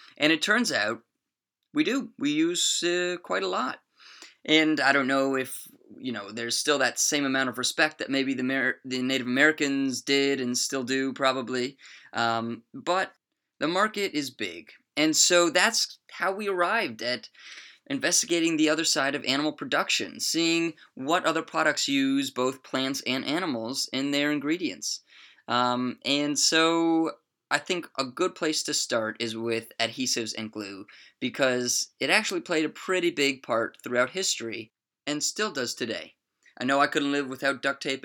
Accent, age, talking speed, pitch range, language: American, 20-39, 170 wpm, 125-195 Hz, English